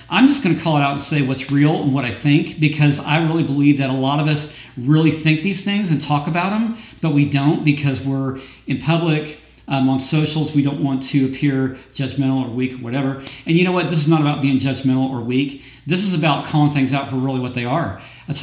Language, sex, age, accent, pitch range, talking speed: English, male, 40-59, American, 130-165 Hz, 250 wpm